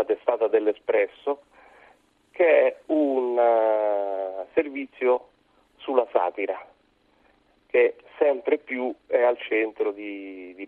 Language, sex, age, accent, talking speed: Italian, male, 40-59, native, 95 wpm